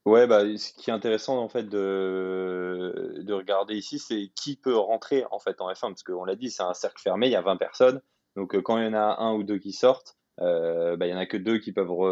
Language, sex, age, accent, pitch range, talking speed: French, male, 20-39, French, 90-110 Hz, 265 wpm